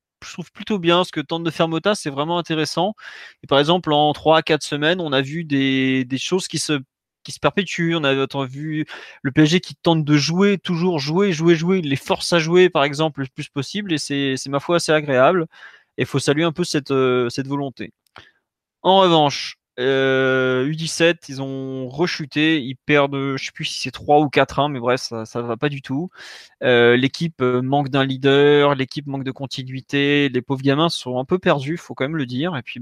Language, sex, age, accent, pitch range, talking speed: French, male, 20-39, French, 135-175 Hz, 220 wpm